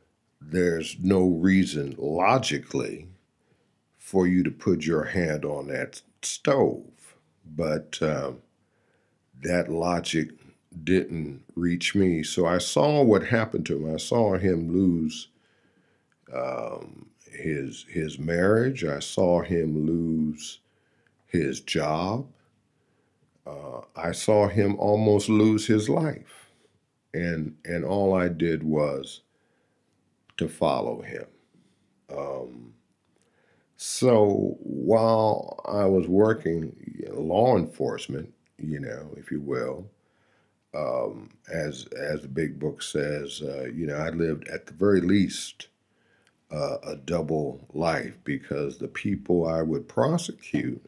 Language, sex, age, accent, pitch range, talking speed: English, male, 50-69, American, 80-95 Hz, 115 wpm